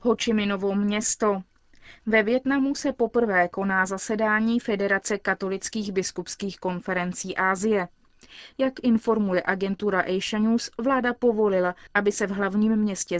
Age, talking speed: 20-39, 115 wpm